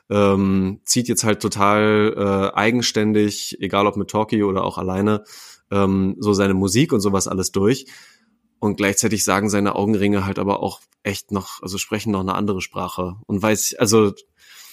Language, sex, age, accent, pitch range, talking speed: German, male, 20-39, German, 100-115 Hz, 170 wpm